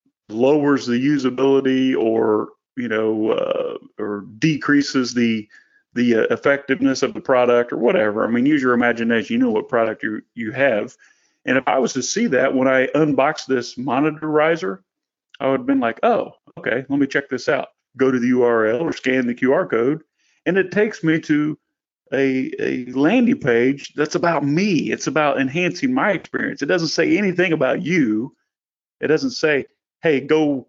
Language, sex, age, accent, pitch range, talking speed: English, male, 40-59, American, 120-160 Hz, 180 wpm